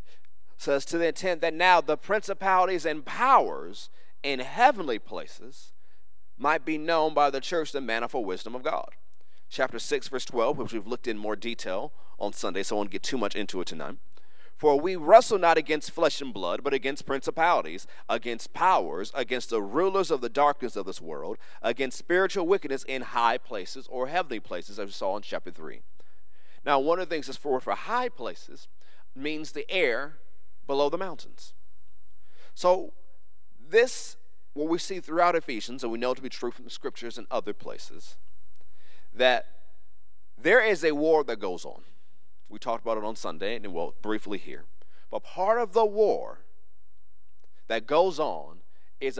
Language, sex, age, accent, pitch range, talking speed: English, male, 40-59, American, 115-175 Hz, 175 wpm